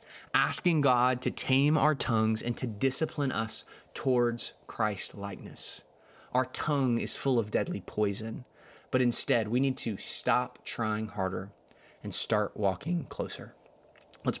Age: 20-39